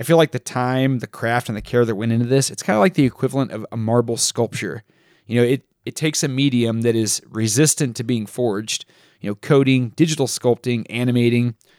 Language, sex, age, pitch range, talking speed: English, male, 30-49, 110-130 Hz, 220 wpm